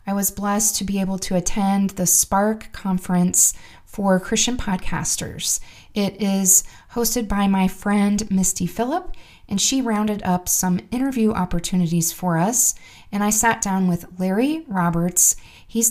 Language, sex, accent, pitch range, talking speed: English, female, American, 185-220 Hz, 145 wpm